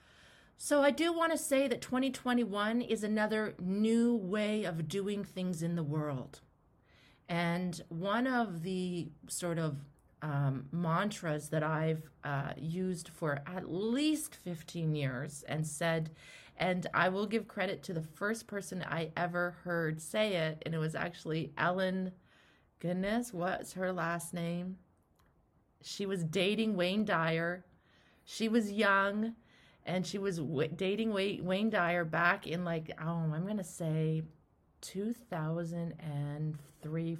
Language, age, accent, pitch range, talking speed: English, 30-49, American, 155-205 Hz, 130 wpm